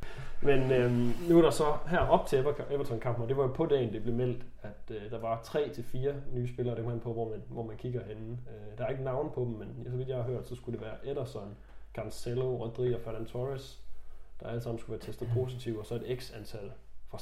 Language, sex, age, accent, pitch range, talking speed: Danish, male, 20-39, native, 115-125 Hz, 250 wpm